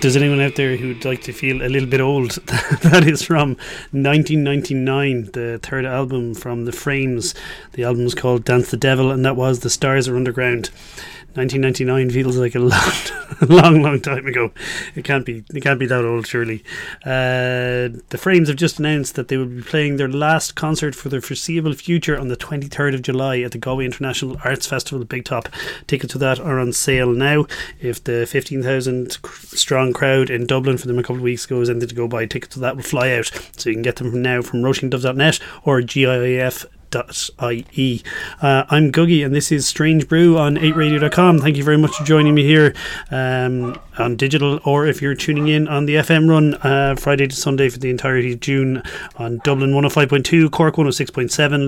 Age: 30-49